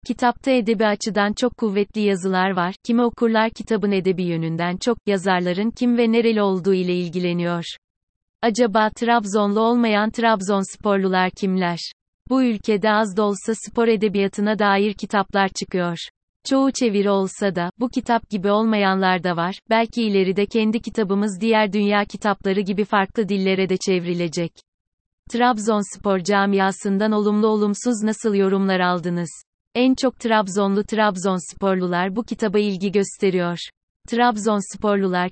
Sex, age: female, 30-49